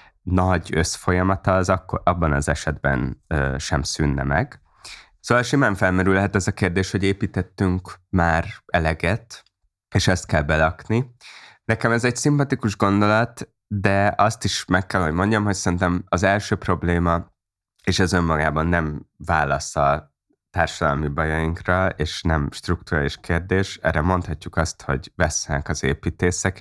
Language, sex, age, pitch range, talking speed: Hungarian, male, 20-39, 75-95 Hz, 135 wpm